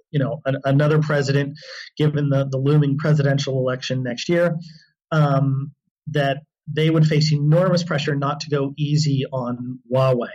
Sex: male